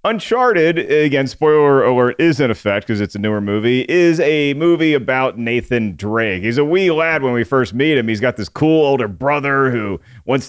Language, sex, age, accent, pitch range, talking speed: English, male, 40-59, American, 110-145 Hz, 200 wpm